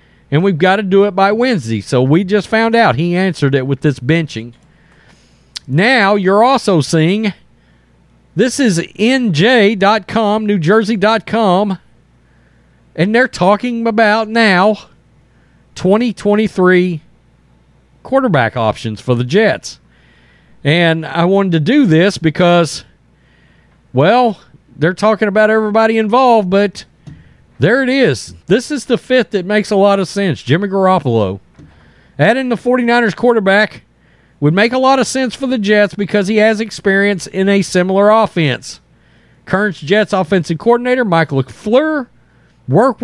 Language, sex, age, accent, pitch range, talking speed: English, male, 40-59, American, 160-225 Hz, 130 wpm